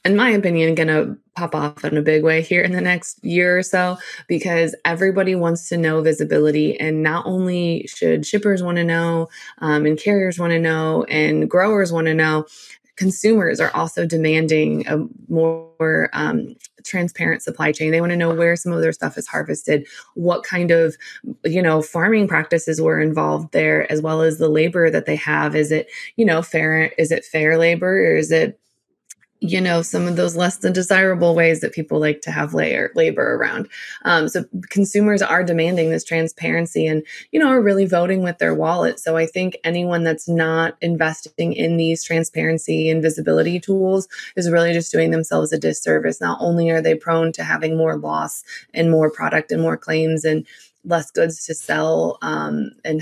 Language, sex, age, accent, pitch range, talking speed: English, female, 20-39, American, 155-175 Hz, 190 wpm